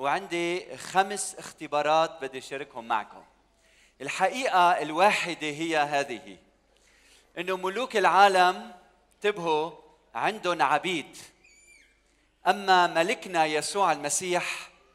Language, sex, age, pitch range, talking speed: Arabic, male, 40-59, 165-205 Hz, 80 wpm